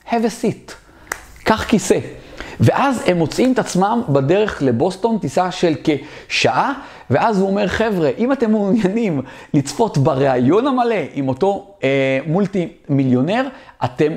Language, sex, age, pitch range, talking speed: Hebrew, male, 40-59, 130-180 Hz, 125 wpm